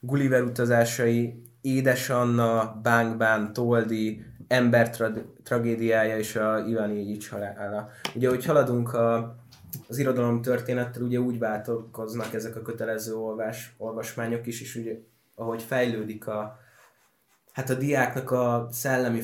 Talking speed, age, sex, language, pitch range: 120 wpm, 20-39, male, Hungarian, 110-120 Hz